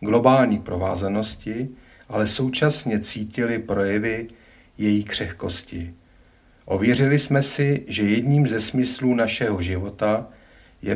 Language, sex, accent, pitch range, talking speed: Czech, male, native, 95-120 Hz, 100 wpm